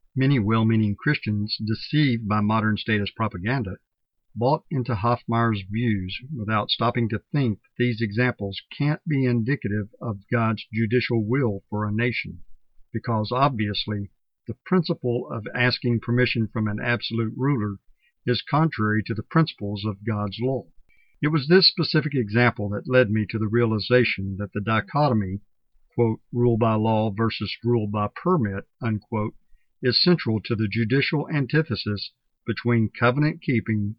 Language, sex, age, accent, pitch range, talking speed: English, male, 50-69, American, 105-125 Hz, 140 wpm